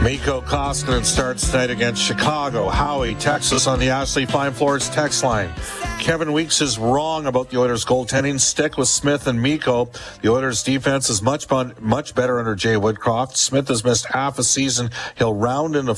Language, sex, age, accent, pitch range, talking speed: English, male, 50-69, American, 110-135 Hz, 175 wpm